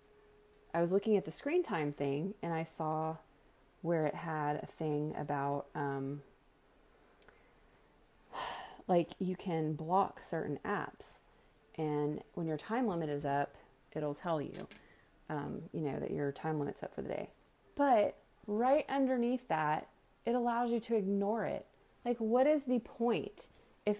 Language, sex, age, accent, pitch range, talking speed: English, female, 30-49, American, 155-210 Hz, 155 wpm